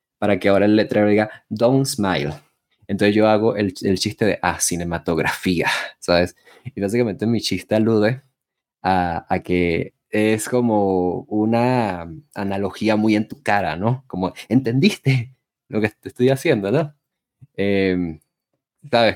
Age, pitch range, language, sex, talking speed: 20-39, 95-120 Hz, Spanish, male, 140 wpm